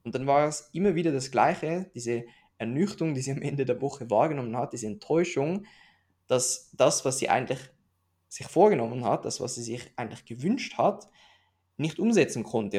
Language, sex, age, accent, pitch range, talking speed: German, male, 20-39, German, 120-155 Hz, 180 wpm